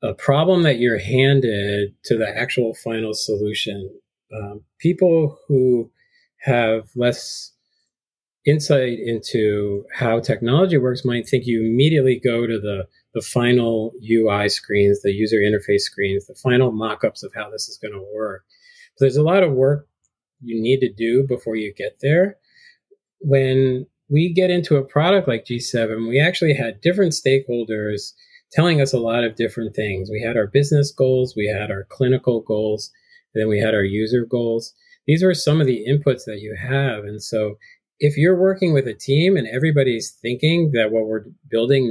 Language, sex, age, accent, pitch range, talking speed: English, male, 40-59, American, 110-150 Hz, 170 wpm